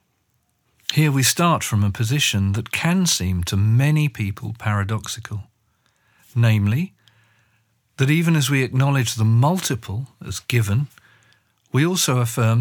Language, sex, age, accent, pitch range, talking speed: English, male, 40-59, British, 105-135 Hz, 125 wpm